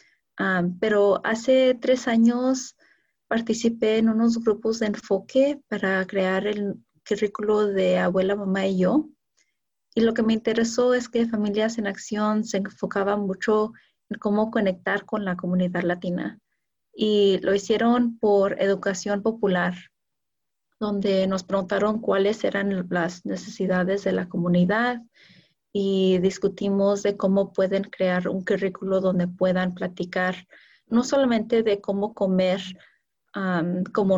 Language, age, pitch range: Spanish, 30-49, 190-225 Hz